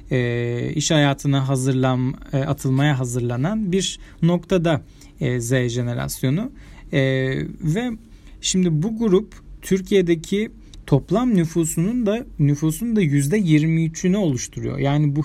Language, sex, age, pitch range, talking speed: Turkish, male, 40-59, 130-160 Hz, 105 wpm